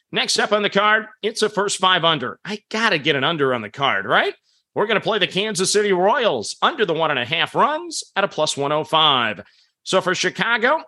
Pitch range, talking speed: 175-215 Hz, 220 wpm